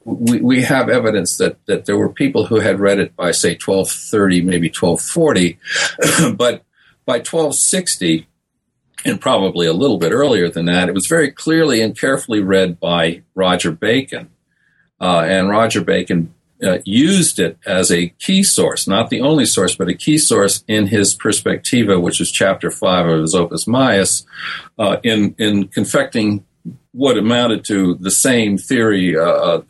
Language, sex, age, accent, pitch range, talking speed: English, male, 50-69, American, 85-110 Hz, 160 wpm